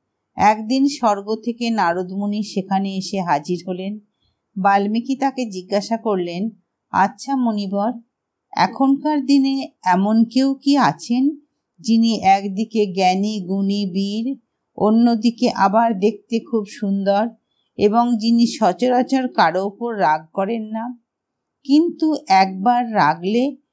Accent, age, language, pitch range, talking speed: native, 50-69, Hindi, 195-250 Hz, 80 wpm